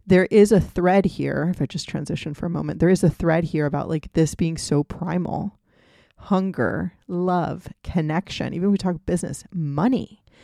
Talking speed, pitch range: 185 wpm, 155-190 Hz